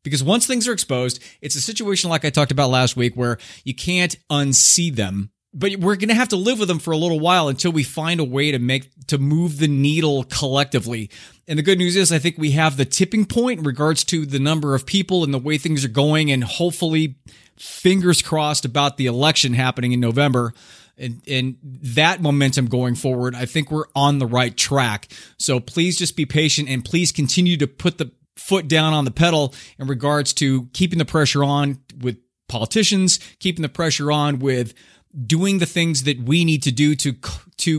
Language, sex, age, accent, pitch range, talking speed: English, male, 30-49, American, 130-165 Hz, 210 wpm